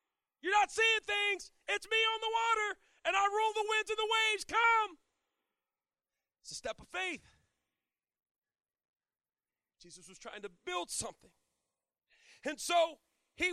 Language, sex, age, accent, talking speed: English, male, 40-59, American, 140 wpm